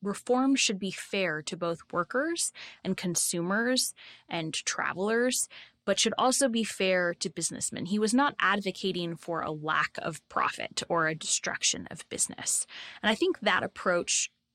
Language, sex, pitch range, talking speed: English, female, 165-200 Hz, 155 wpm